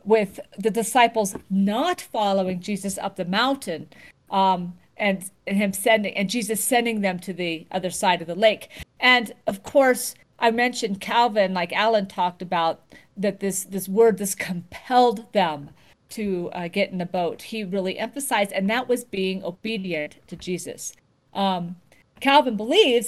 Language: English